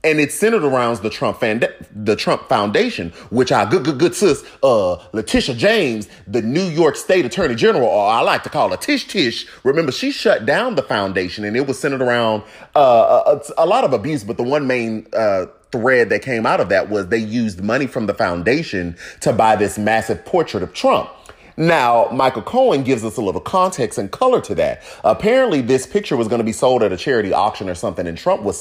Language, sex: English, male